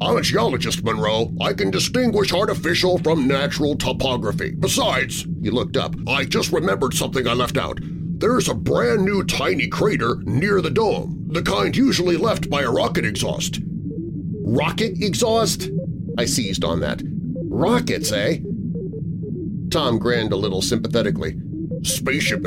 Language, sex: English, male